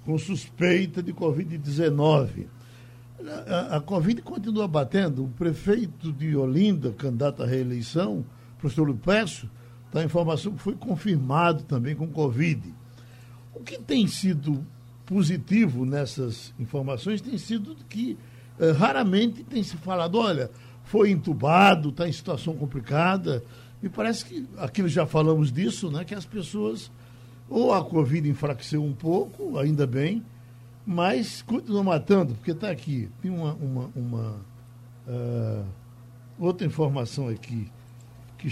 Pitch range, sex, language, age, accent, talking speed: 120-185 Hz, male, Portuguese, 60-79, Brazilian, 130 wpm